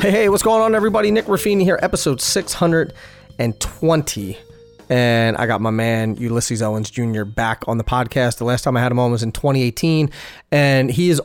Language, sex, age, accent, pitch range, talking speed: English, male, 30-49, American, 115-140 Hz, 190 wpm